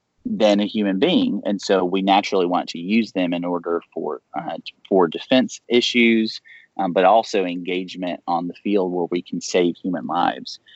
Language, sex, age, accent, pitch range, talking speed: English, male, 30-49, American, 90-110 Hz, 180 wpm